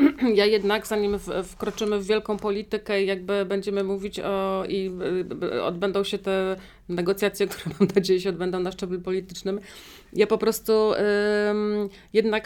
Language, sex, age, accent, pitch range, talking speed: Polish, female, 40-59, native, 205-235 Hz, 140 wpm